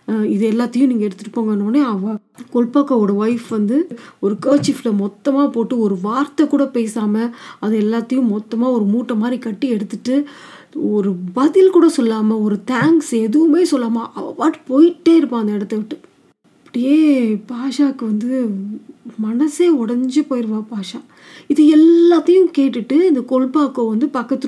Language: Tamil